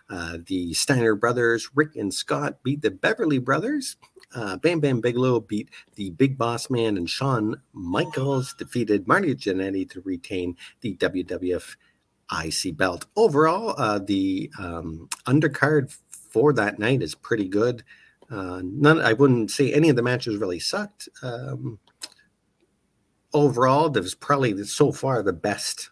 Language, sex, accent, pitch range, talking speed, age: English, male, American, 90-140 Hz, 145 wpm, 50-69